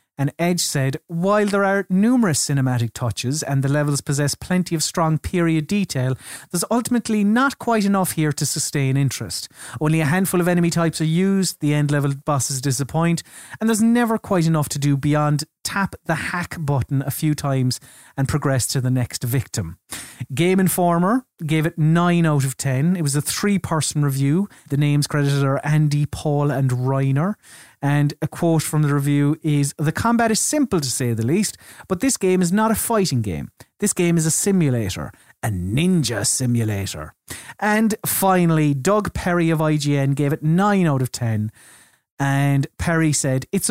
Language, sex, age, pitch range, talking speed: English, male, 30-49, 135-185 Hz, 175 wpm